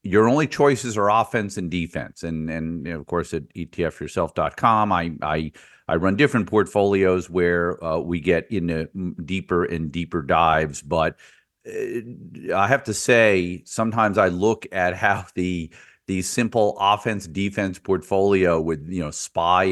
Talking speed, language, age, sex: 155 wpm, English, 40-59, male